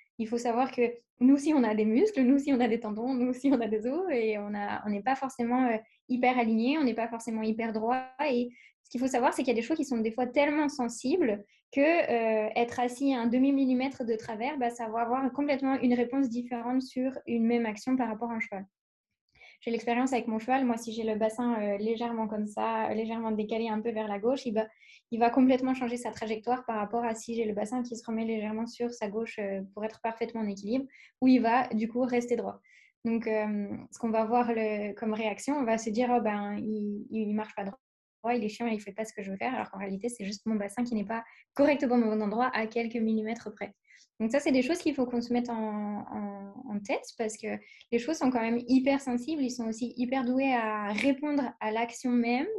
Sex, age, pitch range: female, 10-29, 220-255 Hz